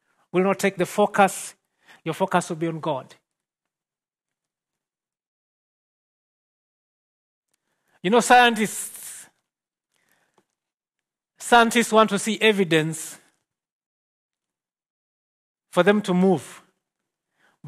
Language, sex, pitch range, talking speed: English, male, 170-205 Hz, 80 wpm